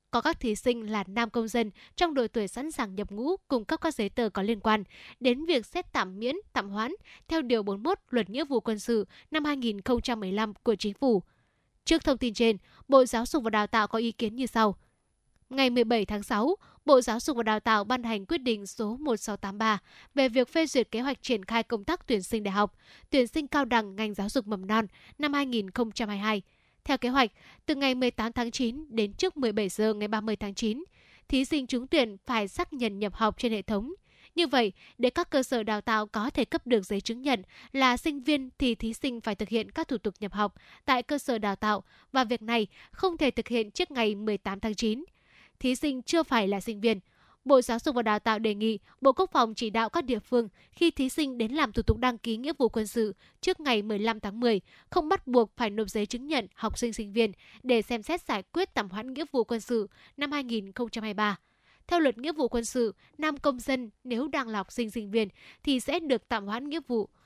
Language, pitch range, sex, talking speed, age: Vietnamese, 220-270 Hz, female, 235 wpm, 10-29